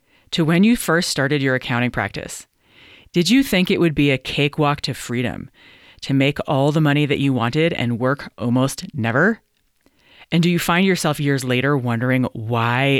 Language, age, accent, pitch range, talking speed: English, 30-49, American, 125-165 Hz, 180 wpm